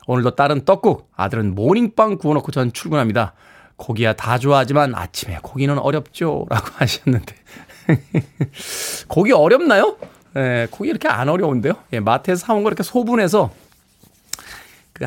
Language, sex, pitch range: Korean, male, 115-170 Hz